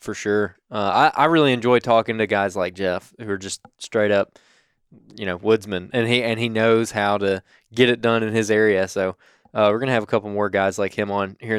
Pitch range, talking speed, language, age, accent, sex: 105-120 Hz, 245 wpm, English, 20-39, American, male